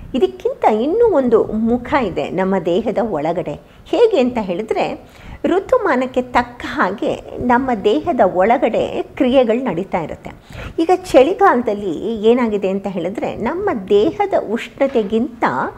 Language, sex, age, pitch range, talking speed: Kannada, female, 50-69, 210-300 Hz, 105 wpm